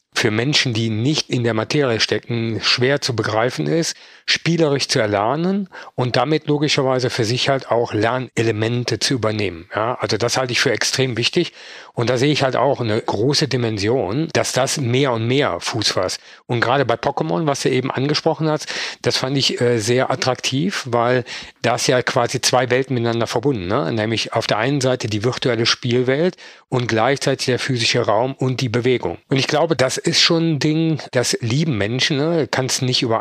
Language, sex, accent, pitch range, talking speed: German, male, German, 115-140 Hz, 190 wpm